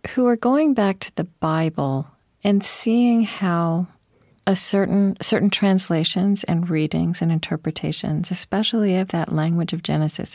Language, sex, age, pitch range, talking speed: English, female, 40-59, 165-200 Hz, 140 wpm